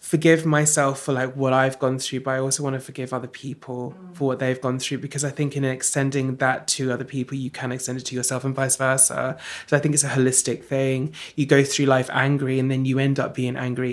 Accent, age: British, 20-39